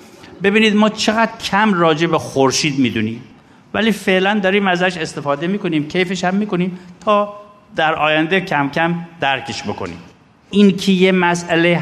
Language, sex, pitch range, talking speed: Persian, male, 135-185 Hz, 140 wpm